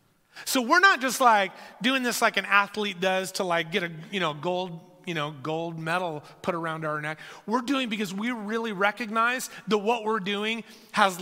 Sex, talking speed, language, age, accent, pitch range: male, 200 wpm, English, 30-49, American, 200-255 Hz